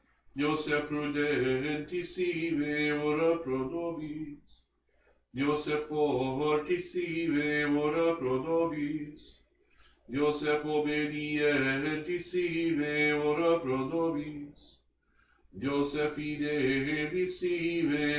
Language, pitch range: English, 145-165 Hz